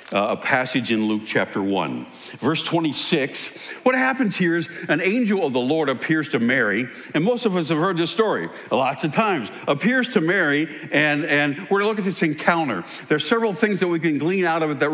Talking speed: 215 wpm